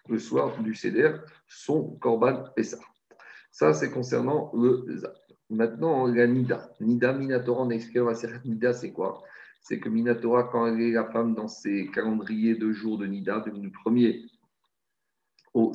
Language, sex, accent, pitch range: French, male, French, 110-125 Hz